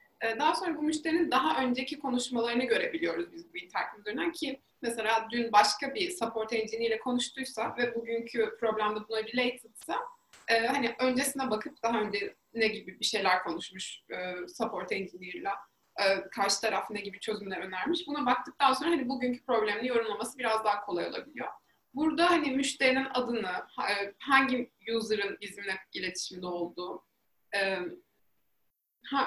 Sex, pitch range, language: female, 215-275 Hz, Turkish